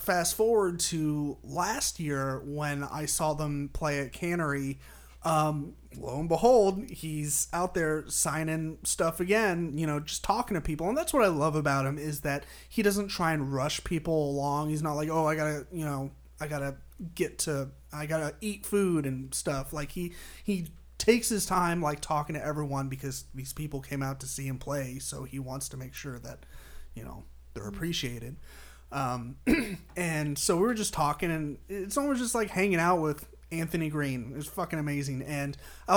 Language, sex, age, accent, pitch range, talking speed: English, male, 30-49, American, 140-185 Hz, 190 wpm